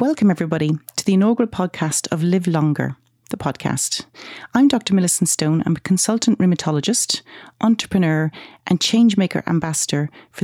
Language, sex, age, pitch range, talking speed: English, female, 40-59, 155-200 Hz, 140 wpm